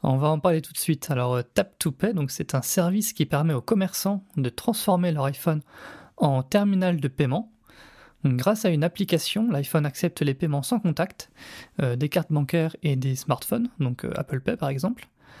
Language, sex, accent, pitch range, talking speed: French, male, French, 140-185 Hz, 185 wpm